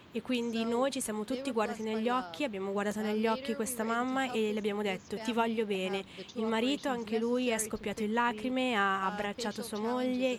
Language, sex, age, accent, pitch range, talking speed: Italian, female, 20-39, native, 200-235 Hz, 195 wpm